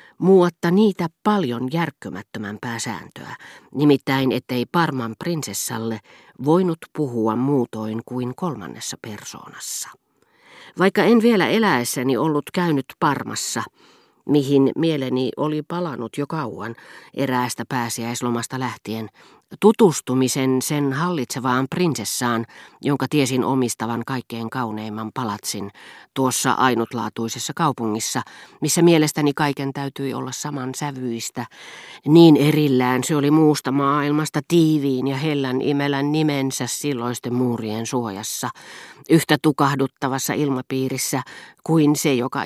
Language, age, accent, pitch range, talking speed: Finnish, 40-59, native, 120-150 Hz, 100 wpm